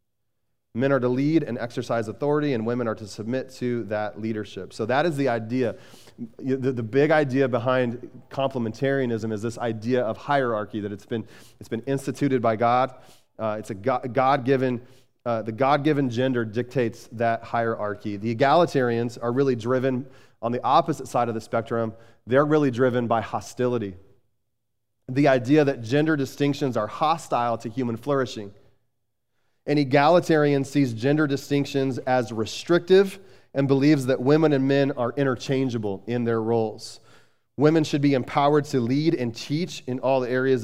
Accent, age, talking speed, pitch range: American, 30-49, 155 wpm, 115-140 Hz